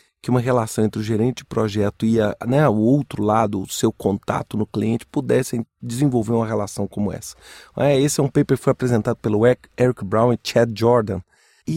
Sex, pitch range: male, 115-160 Hz